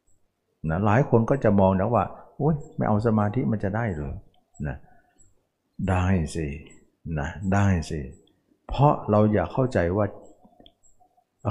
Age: 60-79